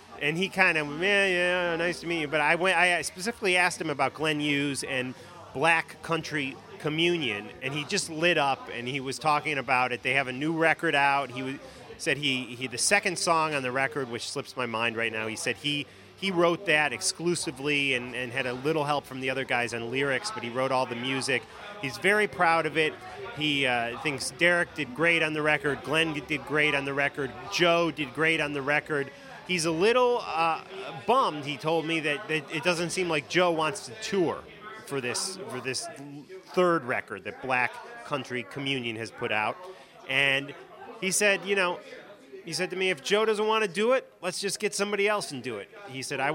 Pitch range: 135-175 Hz